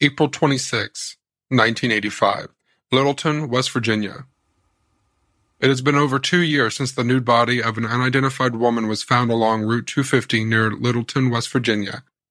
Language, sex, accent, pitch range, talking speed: English, male, American, 110-135 Hz, 140 wpm